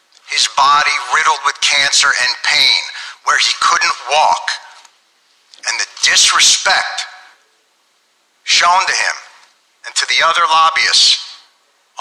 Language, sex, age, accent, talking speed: English, male, 50-69, American, 110 wpm